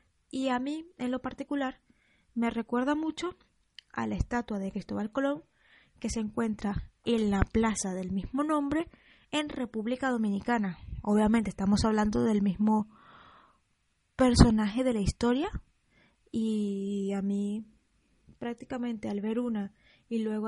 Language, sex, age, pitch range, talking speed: Spanish, female, 20-39, 210-260 Hz, 130 wpm